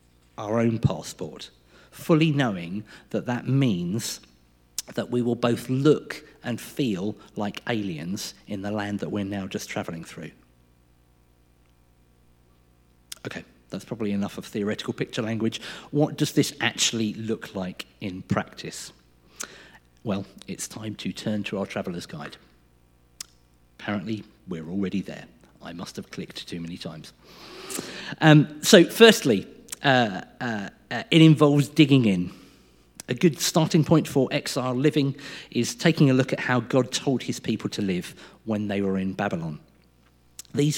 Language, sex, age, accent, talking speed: English, male, 50-69, British, 140 wpm